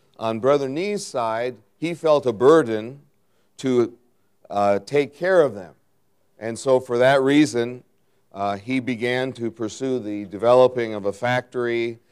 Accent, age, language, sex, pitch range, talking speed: American, 50-69, English, male, 100-140 Hz, 145 wpm